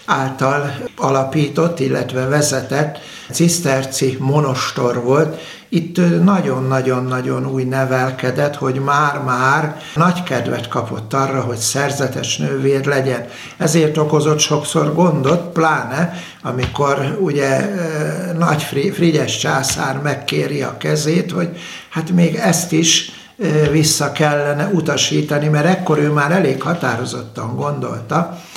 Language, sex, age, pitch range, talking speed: Hungarian, male, 60-79, 135-165 Hz, 105 wpm